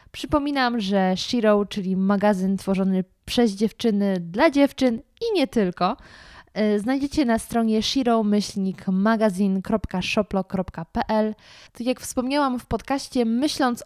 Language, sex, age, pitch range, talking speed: Polish, female, 20-39, 195-240 Hz, 100 wpm